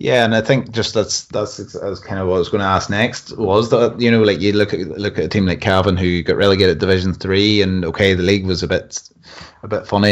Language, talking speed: English, 275 wpm